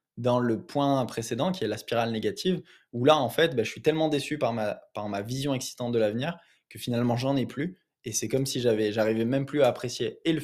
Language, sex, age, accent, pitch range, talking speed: French, male, 20-39, French, 120-155 Hz, 245 wpm